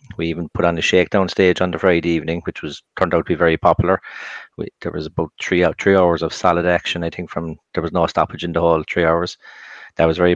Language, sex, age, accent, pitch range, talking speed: English, male, 30-49, Irish, 85-95 Hz, 260 wpm